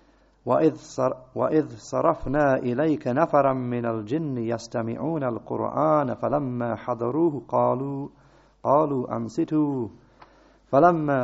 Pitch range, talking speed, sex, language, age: 115-150 Hz, 70 wpm, male, English, 50-69